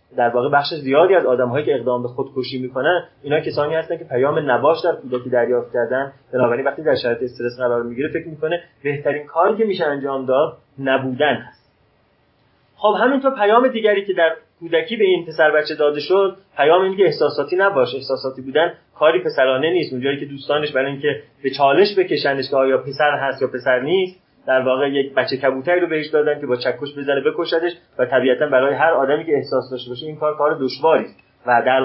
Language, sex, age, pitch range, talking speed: Persian, male, 30-49, 130-170 Hz, 195 wpm